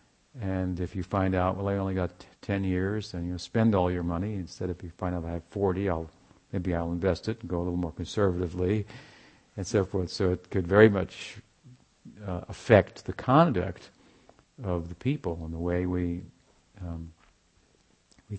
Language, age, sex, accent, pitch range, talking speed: English, 50-69, male, American, 85-100 Hz, 190 wpm